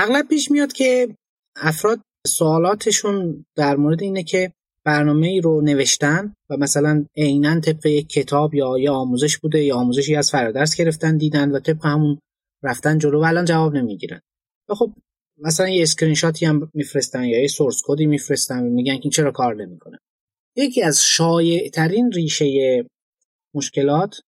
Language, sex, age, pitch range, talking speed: Persian, male, 30-49, 140-170 Hz, 150 wpm